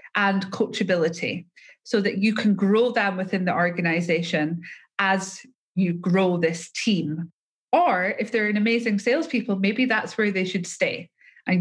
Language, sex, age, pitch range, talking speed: English, female, 20-39, 180-230 Hz, 150 wpm